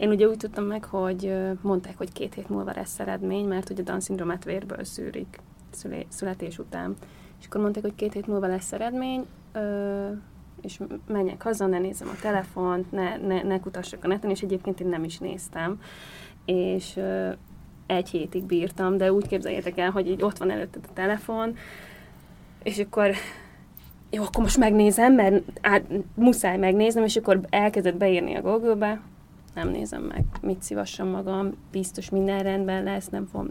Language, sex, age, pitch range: Hungarian, female, 20-39, 185-205 Hz